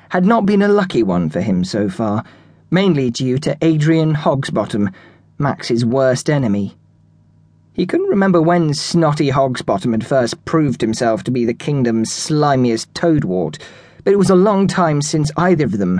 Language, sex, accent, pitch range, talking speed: English, male, British, 120-170 Hz, 165 wpm